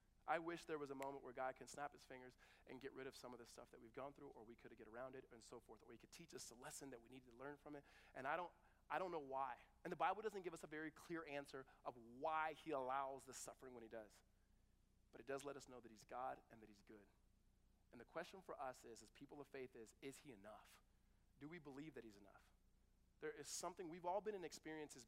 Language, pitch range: English, 125-155 Hz